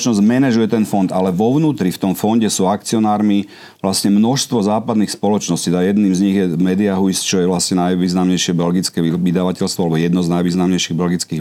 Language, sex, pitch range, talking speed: Slovak, male, 90-105 Hz, 170 wpm